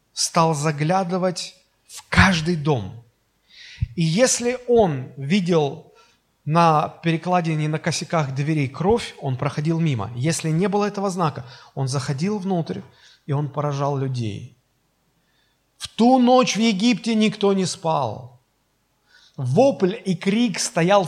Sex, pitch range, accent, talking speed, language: male, 135-185 Hz, native, 120 wpm, Russian